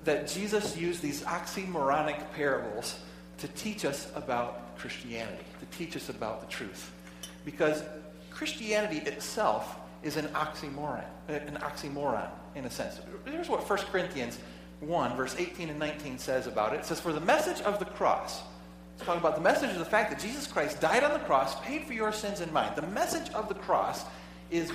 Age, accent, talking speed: 40-59, American, 180 wpm